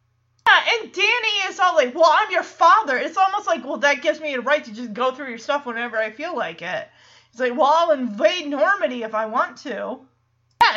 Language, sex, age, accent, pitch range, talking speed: English, female, 30-49, American, 220-320 Hz, 230 wpm